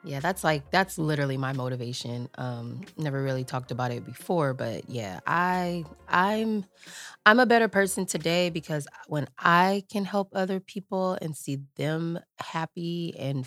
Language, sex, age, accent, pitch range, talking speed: English, female, 20-39, American, 125-165 Hz, 155 wpm